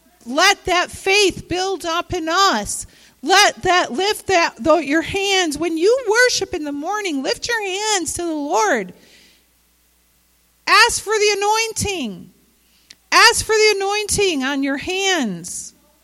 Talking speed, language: 140 wpm, English